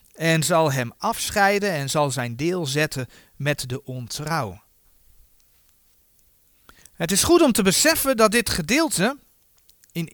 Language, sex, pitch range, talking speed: Dutch, male, 165-270 Hz, 130 wpm